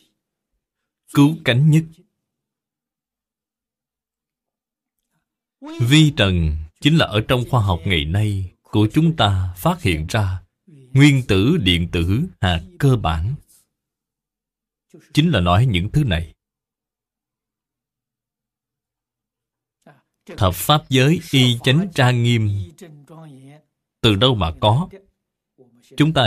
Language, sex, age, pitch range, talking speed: Vietnamese, male, 20-39, 95-155 Hz, 105 wpm